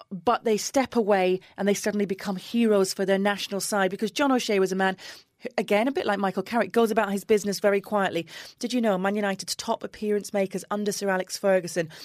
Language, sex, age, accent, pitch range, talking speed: English, female, 30-49, British, 185-230 Hz, 215 wpm